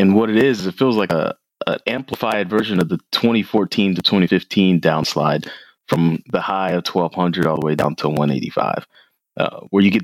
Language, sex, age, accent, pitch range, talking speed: English, male, 20-39, American, 80-100 Hz, 190 wpm